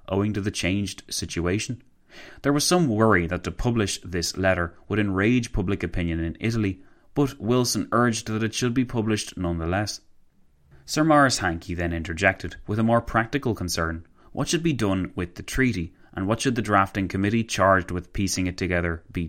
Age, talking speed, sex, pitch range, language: 30-49, 180 wpm, male, 90-115 Hz, English